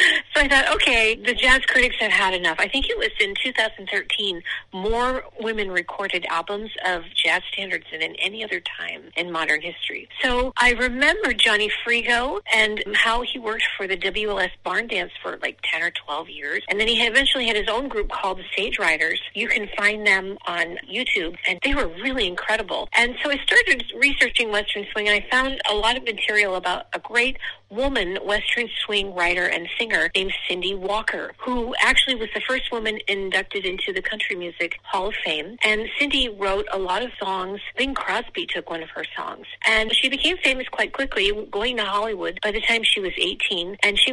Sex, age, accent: female, 40-59, American